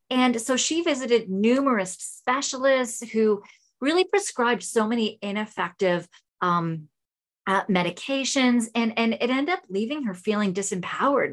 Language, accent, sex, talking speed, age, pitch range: English, American, female, 125 wpm, 30-49, 185-235 Hz